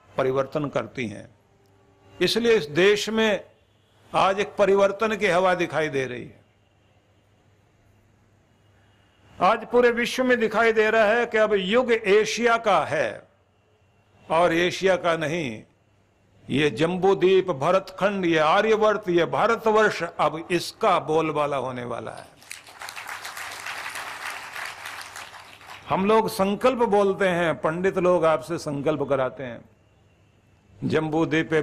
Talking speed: 110 wpm